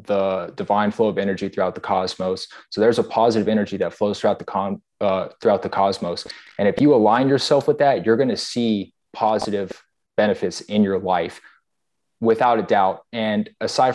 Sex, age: male, 20-39